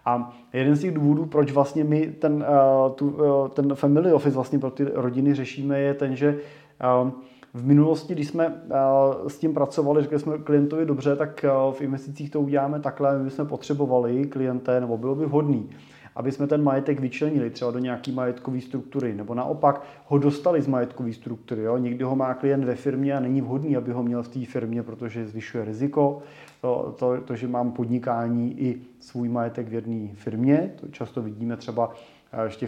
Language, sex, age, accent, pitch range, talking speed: Czech, male, 20-39, native, 120-140 Hz, 180 wpm